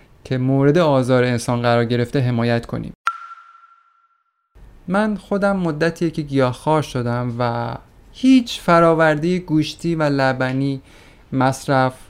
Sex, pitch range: male, 130-185 Hz